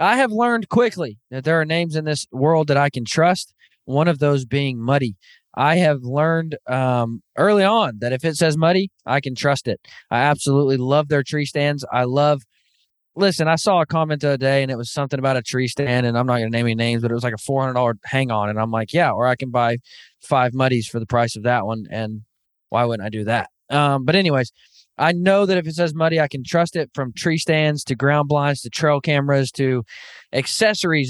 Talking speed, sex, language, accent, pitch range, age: 235 wpm, male, English, American, 125-160 Hz, 20-39